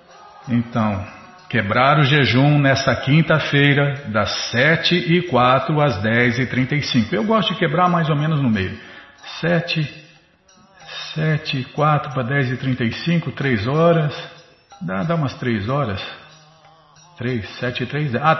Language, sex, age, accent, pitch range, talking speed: Portuguese, male, 50-69, Brazilian, 120-165 Hz, 120 wpm